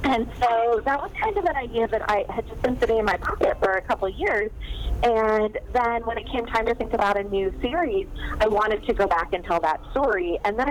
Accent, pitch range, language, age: American, 185-230 Hz, English, 30-49